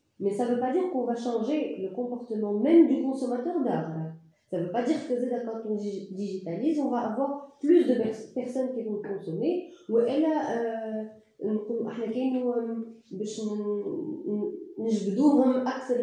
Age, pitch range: 30-49, 190-250 Hz